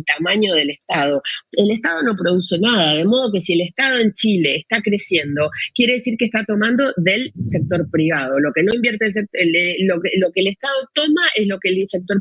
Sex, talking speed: female, 200 wpm